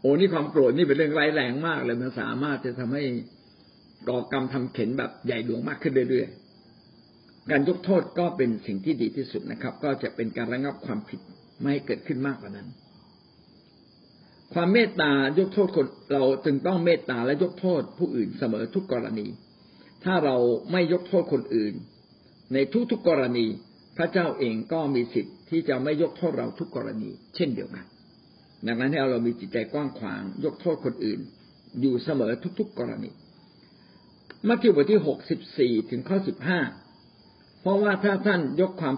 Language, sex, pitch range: Thai, male, 125-180 Hz